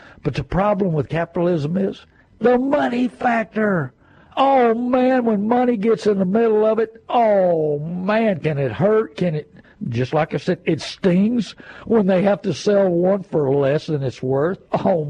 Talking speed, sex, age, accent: 175 wpm, male, 60-79, American